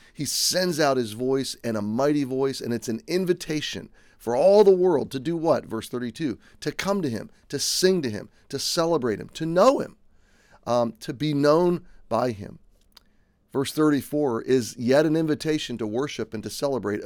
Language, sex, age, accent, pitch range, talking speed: English, male, 30-49, American, 110-150 Hz, 185 wpm